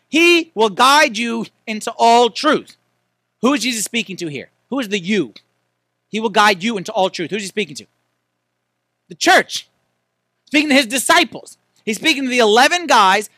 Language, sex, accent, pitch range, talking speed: English, male, American, 160-260 Hz, 185 wpm